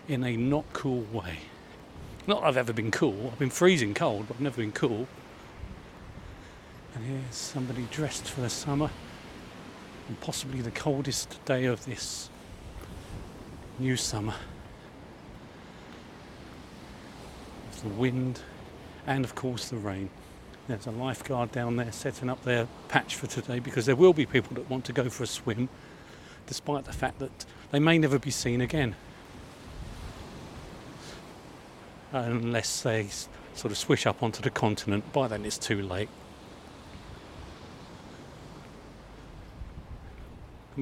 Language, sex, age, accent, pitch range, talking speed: English, male, 40-59, British, 110-135 Hz, 135 wpm